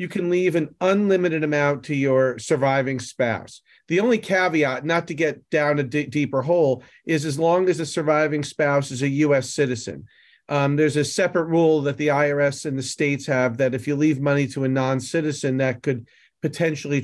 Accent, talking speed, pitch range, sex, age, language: American, 195 wpm, 135-170 Hz, male, 40-59, English